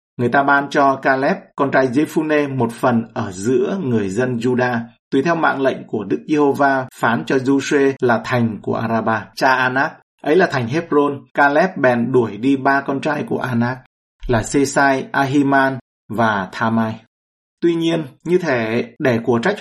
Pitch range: 115-140 Hz